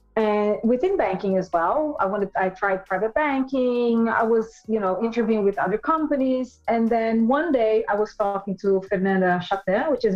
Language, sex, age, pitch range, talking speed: Portuguese, female, 30-49, 195-240 Hz, 190 wpm